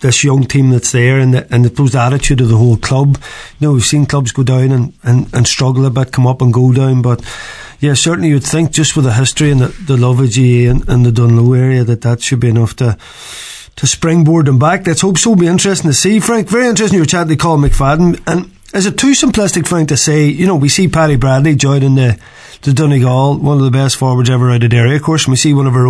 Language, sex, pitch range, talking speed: English, male, 125-155 Hz, 270 wpm